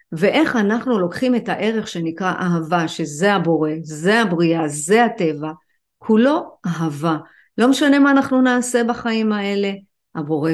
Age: 50-69